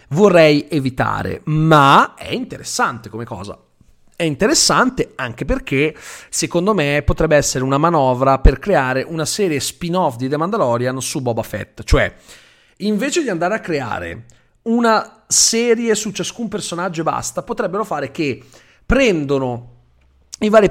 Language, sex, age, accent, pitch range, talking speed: Italian, male, 30-49, native, 125-180 Hz, 140 wpm